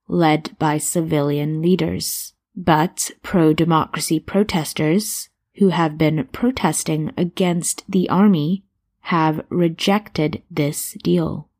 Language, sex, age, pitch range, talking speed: English, female, 20-39, 160-185 Hz, 95 wpm